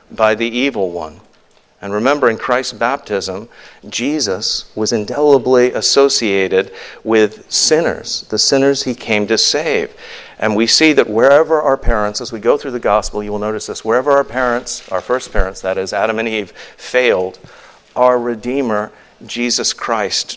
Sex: male